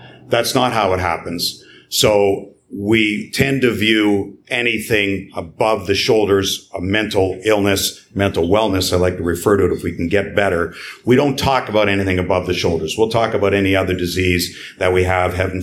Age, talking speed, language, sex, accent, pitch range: 50-69, 185 wpm, English, male, American, 90-105 Hz